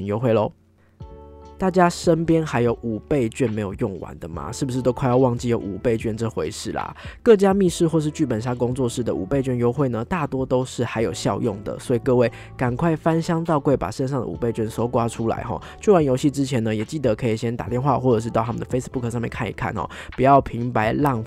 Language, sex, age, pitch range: Chinese, male, 20-39, 110-145 Hz